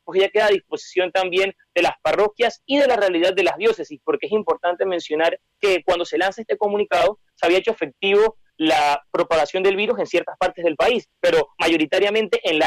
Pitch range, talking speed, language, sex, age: 170-215 Hz, 205 wpm, Spanish, male, 30-49